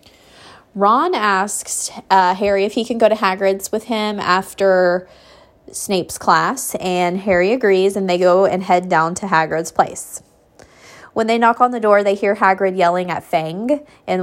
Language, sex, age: English, female, 20-39